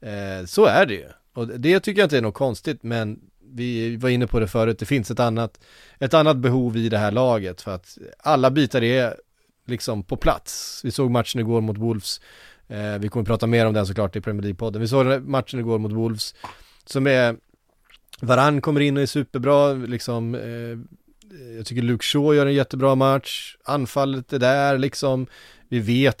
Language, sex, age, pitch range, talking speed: Swedish, male, 30-49, 115-140 Hz, 185 wpm